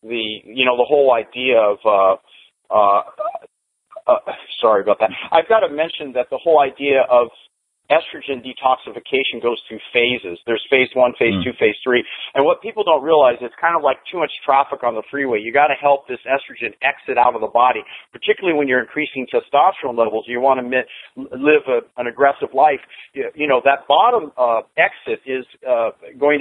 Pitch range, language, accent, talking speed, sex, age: 120-170 Hz, English, American, 185 wpm, male, 50-69